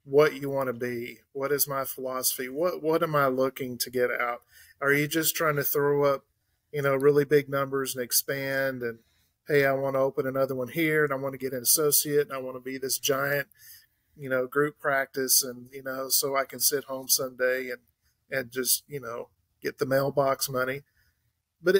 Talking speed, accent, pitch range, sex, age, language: 210 wpm, American, 125-145 Hz, male, 40-59, English